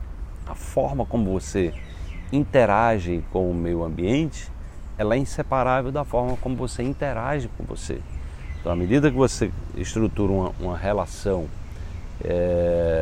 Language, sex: Portuguese, male